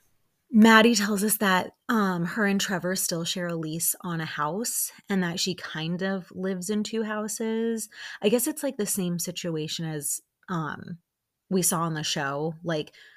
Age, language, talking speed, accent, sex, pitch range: 30-49, English, 180 wpm, American, female, 165-215 Hz